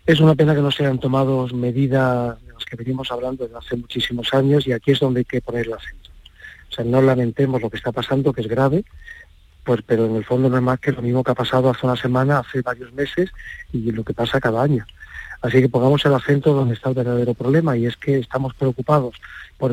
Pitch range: 120-140 Hz